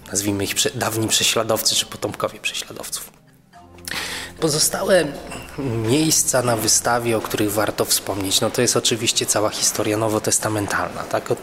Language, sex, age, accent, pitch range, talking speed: Polish, male, 20-39, native, 105-140 Hz, 115 wpm